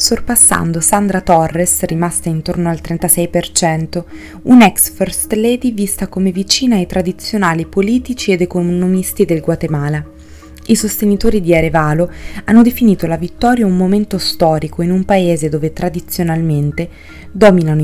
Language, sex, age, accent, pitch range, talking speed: Italian, female, 20-39, native, 160-205 Hz, 125 wpm